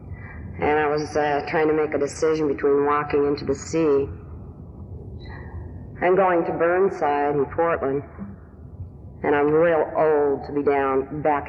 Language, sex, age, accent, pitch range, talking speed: English, female, 50-69, American, 100-155 Hz, 145 wpm